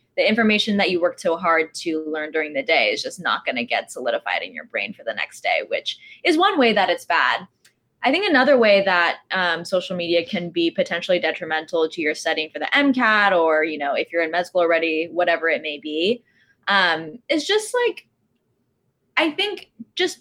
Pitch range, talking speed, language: 170-255 Hz, 210 wpm, English